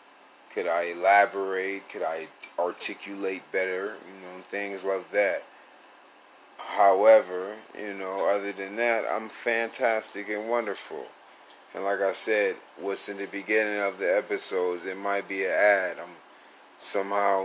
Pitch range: 95-105 Hz